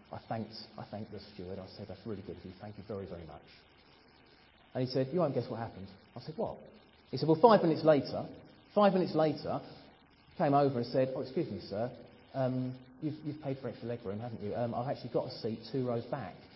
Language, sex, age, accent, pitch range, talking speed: English, male, 40-59, British, 110-160 Hz, 230 wpm